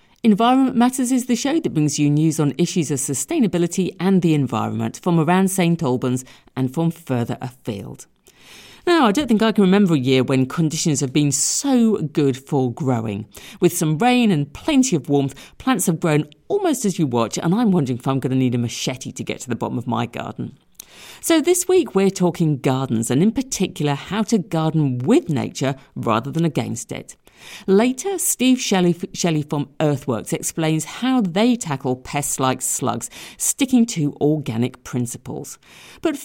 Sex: female